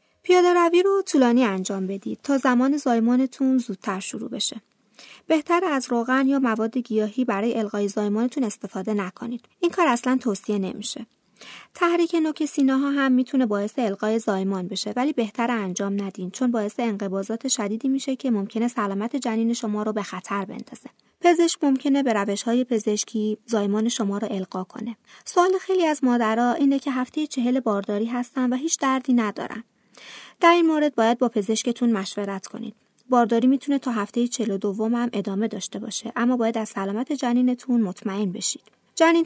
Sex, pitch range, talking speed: female, 215-265 Hz, 165 wpm